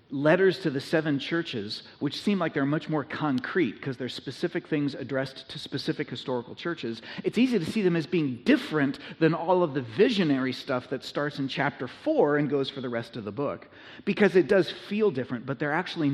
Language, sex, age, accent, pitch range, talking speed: German, male, 40-59, American, 125-160 Hz, 210 wpm